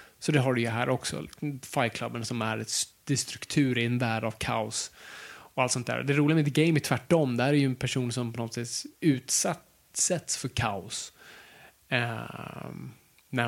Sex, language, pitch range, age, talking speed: male, Swedish, 120-140 Hz, 20-39, 185 wpm